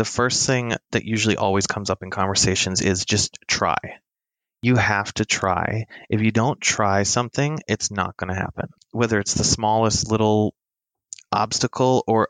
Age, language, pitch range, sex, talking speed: 20-39, English, 100-120 Hz, male, 165 wpm